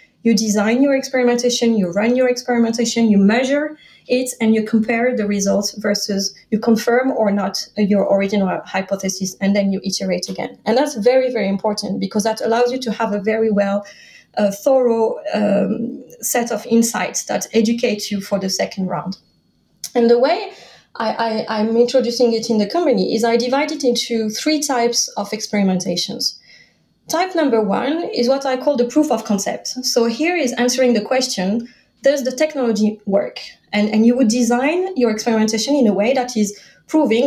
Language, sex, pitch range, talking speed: English, female, 205-255 Hz, 175 wpm